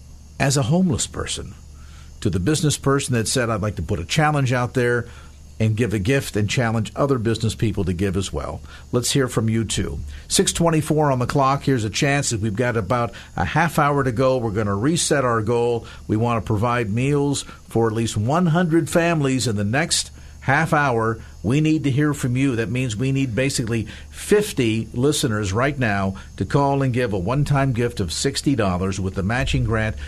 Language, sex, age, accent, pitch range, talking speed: English, male, 50-69, American, 100-145 Hz, 200 wpm